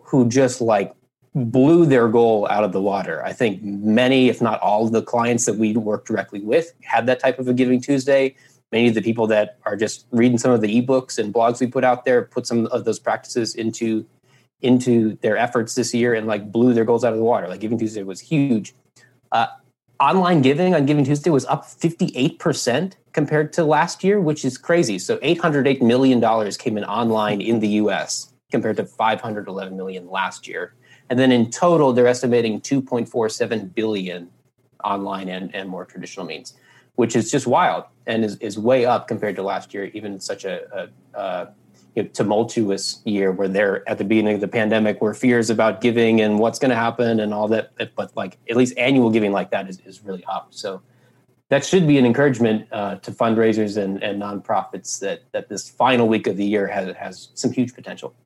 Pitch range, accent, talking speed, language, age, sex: 105-130 Hz, American, 205 wpm, English, 20-39, male